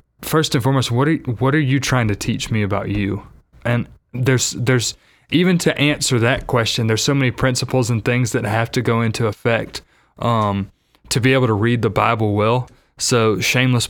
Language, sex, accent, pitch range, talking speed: English, male, American, 110-125 Hz, 195 wpm